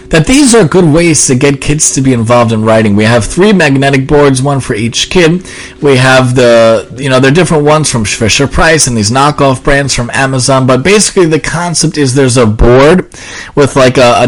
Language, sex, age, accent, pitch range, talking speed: English, male, 30-49, American, 115-145 Hz, 210 wpm